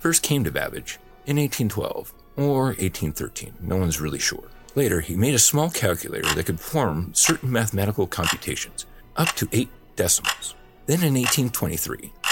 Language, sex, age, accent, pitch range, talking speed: English, male, 40-59, American, 85-120 Hz, 150 wpm